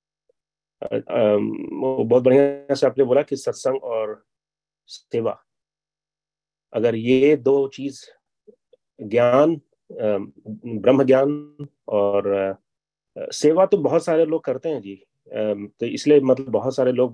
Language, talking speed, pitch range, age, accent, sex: Hindi, 125 wpm, 115-150 Hz, 30-49, native, male